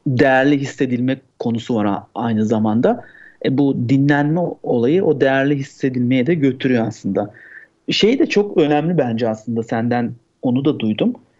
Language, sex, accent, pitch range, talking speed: Turkish, male, native, 125-160 Hz, 140 wpm